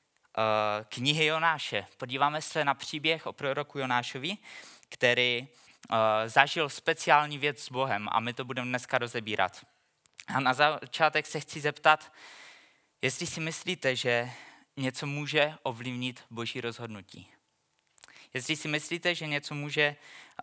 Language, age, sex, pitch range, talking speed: Czech, 20-39, male, 125-155 Hz, 125 wpm